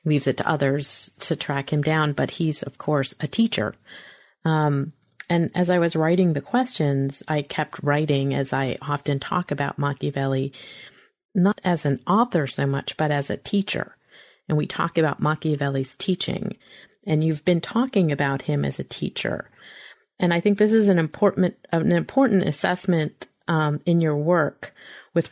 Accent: American